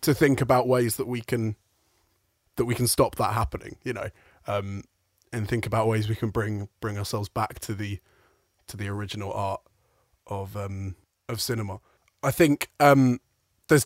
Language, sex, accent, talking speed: English, male, British, 175 wpm